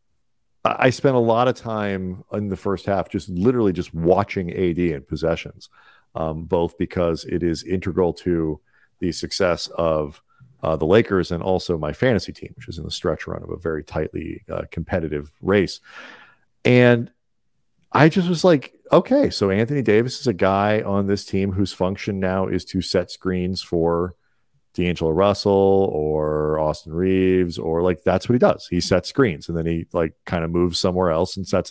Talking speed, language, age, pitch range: 180 wpm, English, 40-59, 90-120 Hz